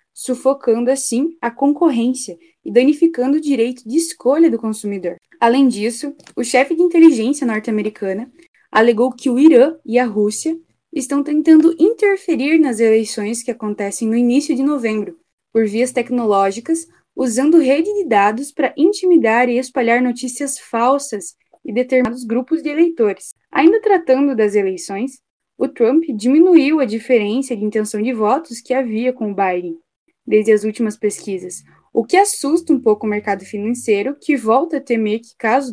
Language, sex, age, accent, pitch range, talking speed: Portuguese, female, 10-29, Brazilian, 215-290 Hz, 155 wpm